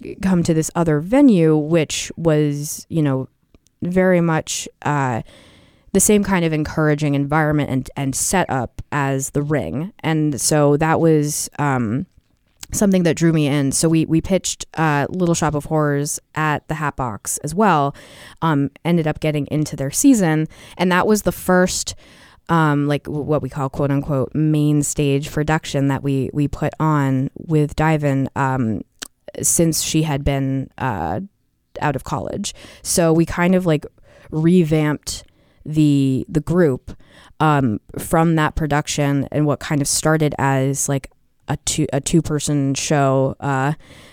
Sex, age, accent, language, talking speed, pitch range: female, 20-39, American, English, 155 wpm, 135-155 Hz